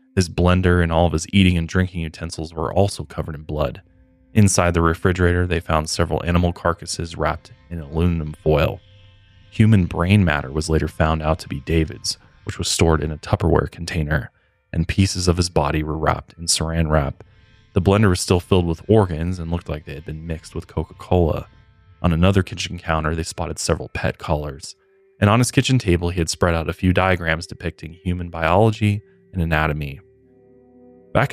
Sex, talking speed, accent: male, 185 wpm, American